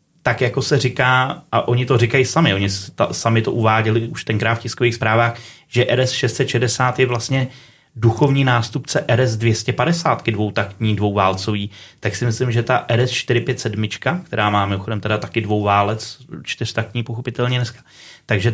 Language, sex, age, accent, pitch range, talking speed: Czech, male, 30-49, native, 110-125 Hz, 150 wpm